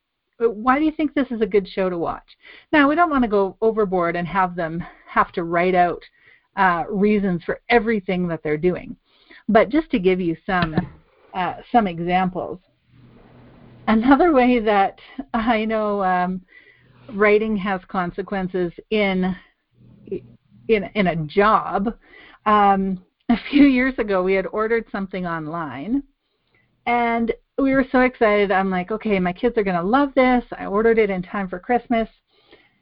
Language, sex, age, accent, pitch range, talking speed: English, female, 40-59, American, 185-240 Hz, 160 wpm